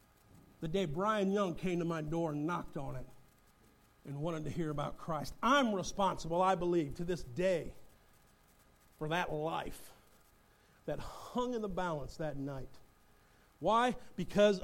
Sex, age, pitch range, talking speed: male, 50-69, 155-255 Hz, 150 wpm